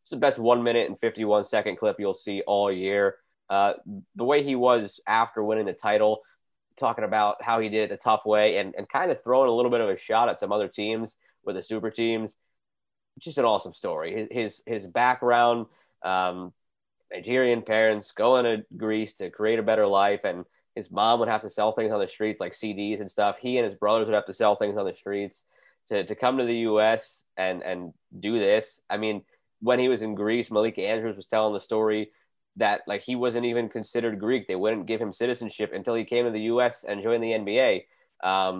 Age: 20-39